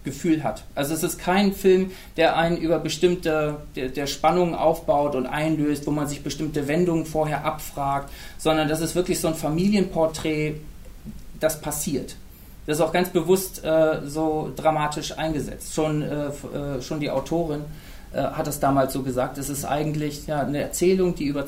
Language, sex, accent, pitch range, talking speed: German, male, German, 145-165 Hz, 170 wpm